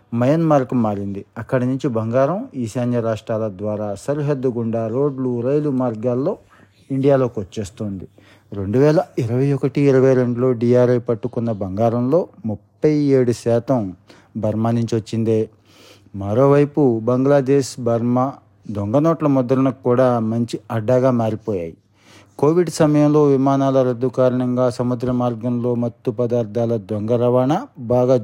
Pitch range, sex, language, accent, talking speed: 110-130 Hz, male, Telugu, native, 100 wpm